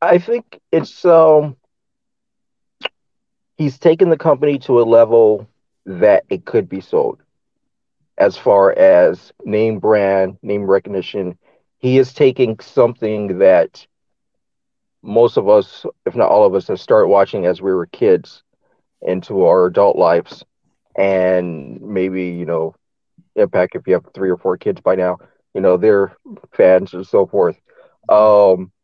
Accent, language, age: American, English, 40-59